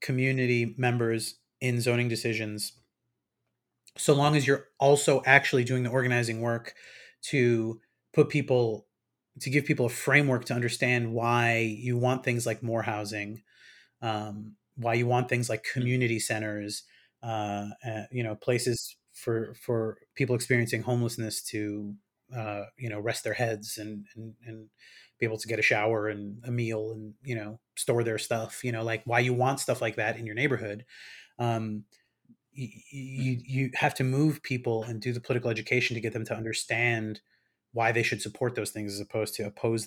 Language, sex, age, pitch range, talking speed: English, male, 30-49, 110-125 Hz, 170 wpm